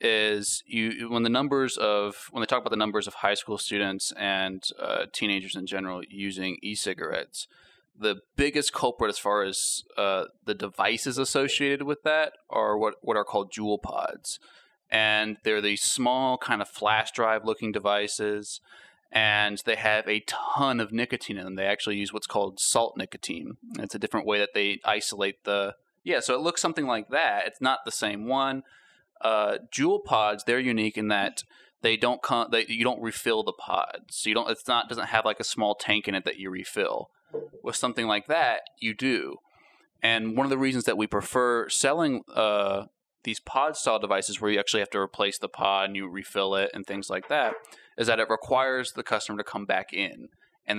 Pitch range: 100-125 Hz